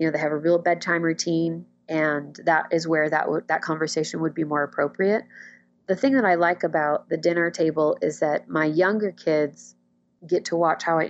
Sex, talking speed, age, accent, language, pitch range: female, 205 wpm, 30-49, American, English, 150-180 Hz